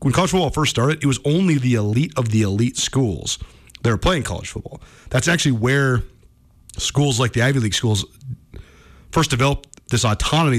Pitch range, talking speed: 110-140 Hz, 180 wpm